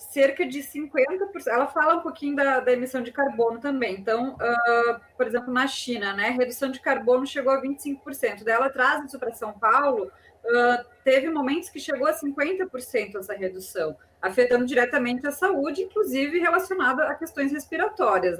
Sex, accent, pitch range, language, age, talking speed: female, Brazilian, 240-305 Hz, Portuguese, 20-39, 165 wpm